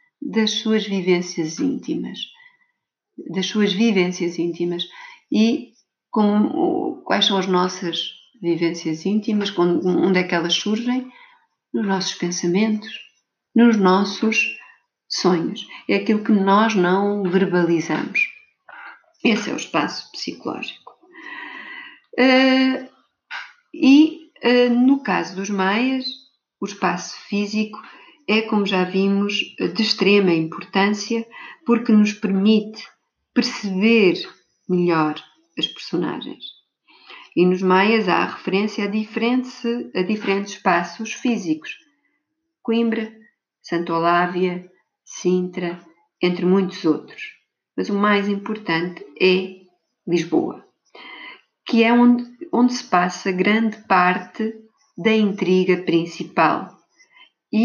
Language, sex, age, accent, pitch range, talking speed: Portuguese, female, 50-69, Brazilian, 180-245 Hz, 100 wpm